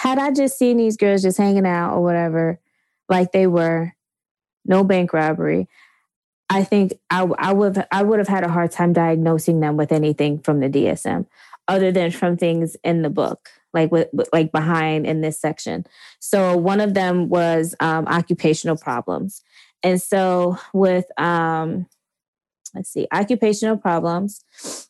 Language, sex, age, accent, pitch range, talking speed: English, female, 20-39, American, 165-190 Hz, 160 wpm